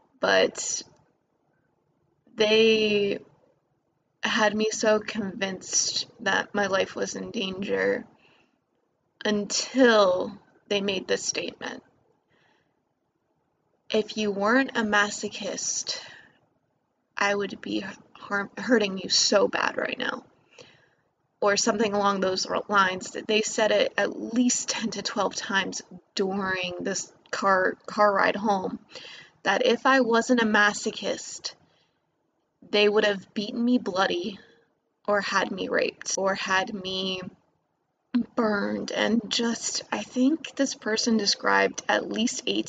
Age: 20-39